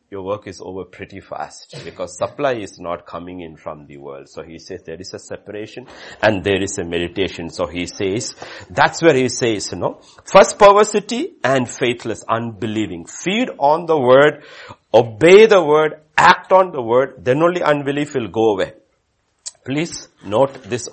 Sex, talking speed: male, 175 wpm